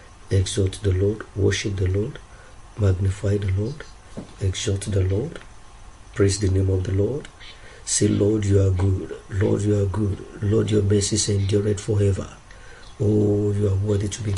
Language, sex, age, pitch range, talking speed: English, male, 50-69, 100-105 Hz, 160 wpm